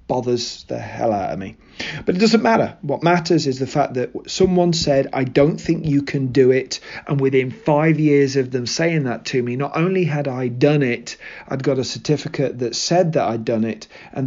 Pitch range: 125-155 Hz